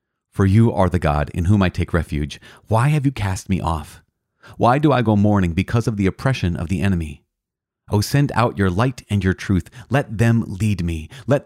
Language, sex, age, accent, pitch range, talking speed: English, male, 40-59, American, 85-110 Hz, 220 wpm